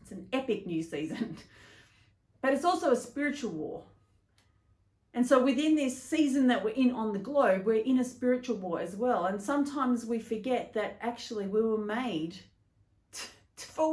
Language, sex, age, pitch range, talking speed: English, female, 40-59, 175-270 Hz, 165 wpm